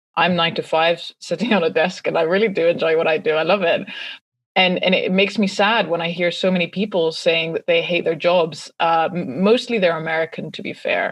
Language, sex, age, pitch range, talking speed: English, female, 20-39, 165-195 Hz, 235 wpm